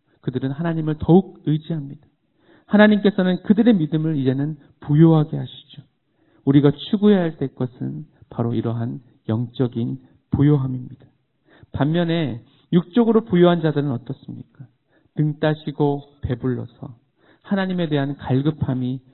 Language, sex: Korean, male